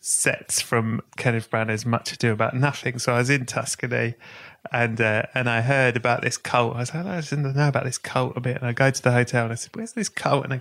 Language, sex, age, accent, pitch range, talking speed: English, male, 30-49, British, 115-140 Hz, 265 wpm